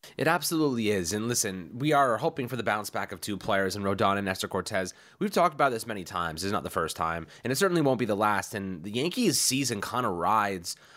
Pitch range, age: 95-125 Hz, 20-39